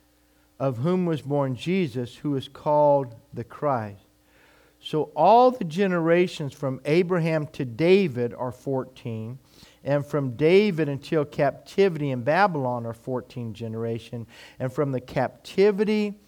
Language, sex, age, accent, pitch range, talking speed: English, male, 50-69, American, 125-175 Hz, 125 wpm